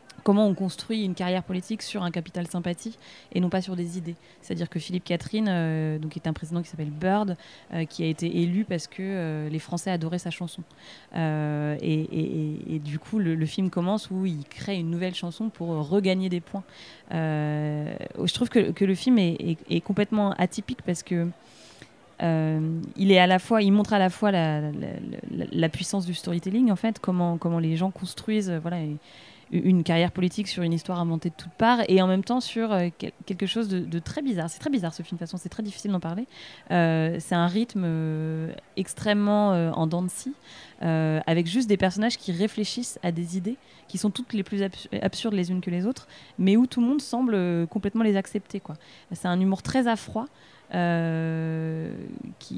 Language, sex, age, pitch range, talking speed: French, female, 20-39, 165-205 Hz, 210 wpm